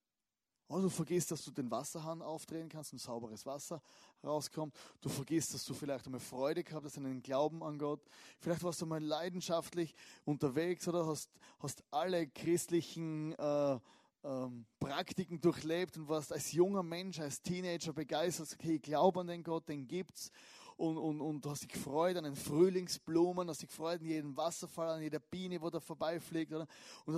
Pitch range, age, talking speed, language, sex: 150-180 Hz, 30-49, 180 wpm, German, male